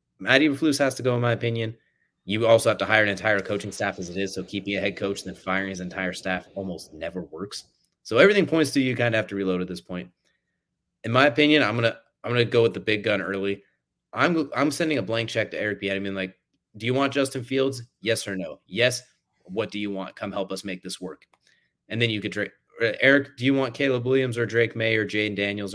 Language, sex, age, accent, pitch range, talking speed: English, male, 30-49, American, 100-120 Hz, 250 wpm